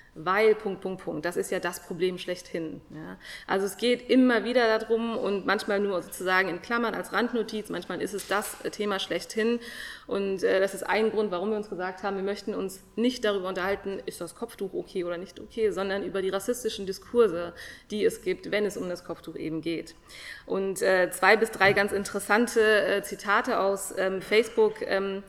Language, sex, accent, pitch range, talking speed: German, female, German, 185-220 Hz, 195 wpm